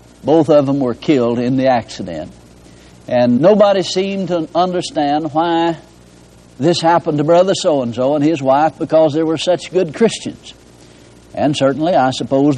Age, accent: 60-79, American